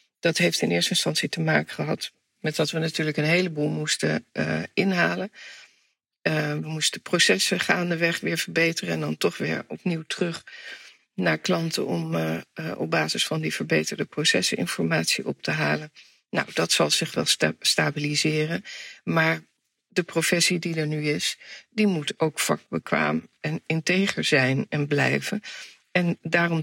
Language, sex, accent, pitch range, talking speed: Dutch, female, Dutch, 150-170 Hz, 155 wpm